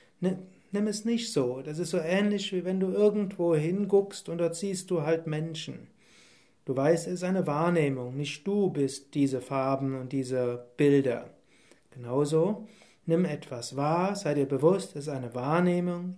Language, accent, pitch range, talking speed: German, German, 145-180 Hz, 165 wpm